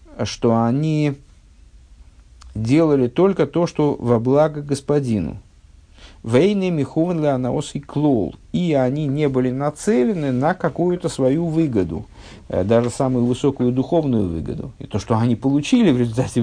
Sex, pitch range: male, 100-135 Hz